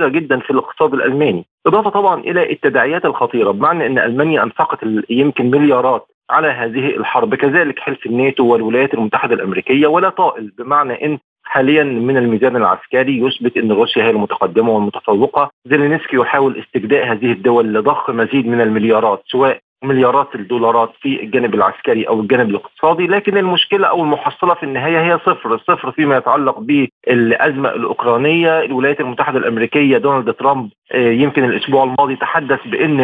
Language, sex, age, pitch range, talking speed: Arabic, male, 40-59, 130-170 Hz, 145 wpm